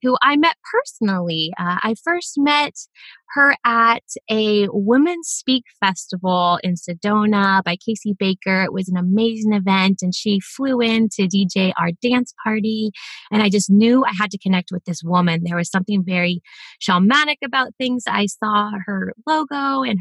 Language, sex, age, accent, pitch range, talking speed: English, female, 20-39, American, 195-255 Hz, 170 wpm